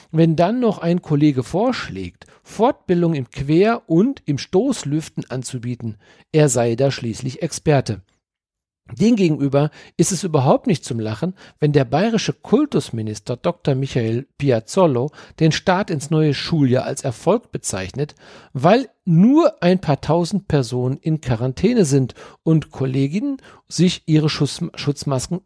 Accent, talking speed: German, 125 wpm